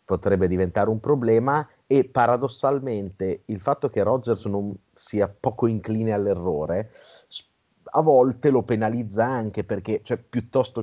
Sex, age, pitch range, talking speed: male, 30-49, 95-115 Hz, 125 wpm